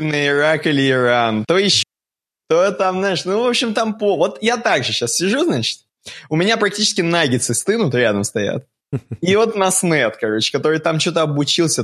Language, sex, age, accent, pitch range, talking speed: Russian, male, 20-39, native, 120-175 Hz, 180 wpm